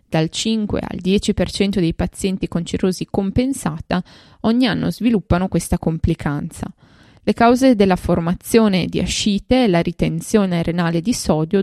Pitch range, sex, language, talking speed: 175-220 Hz, female, Italian, 135 wpm